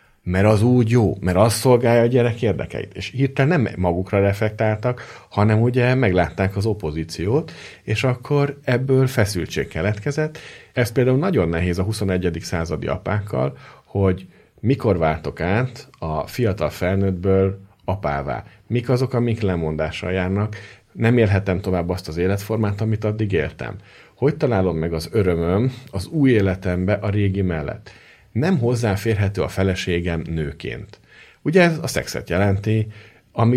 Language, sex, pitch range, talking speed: Hungarian, male, 90-115 Hz, 140 wpm